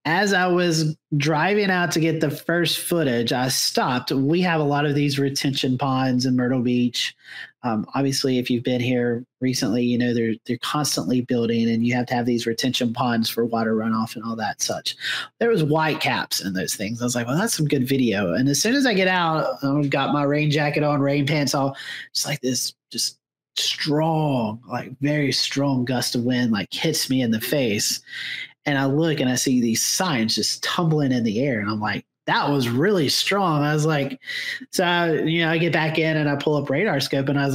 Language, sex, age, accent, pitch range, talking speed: English, male, 30-49, American, 130-175 Hz, 220 wpm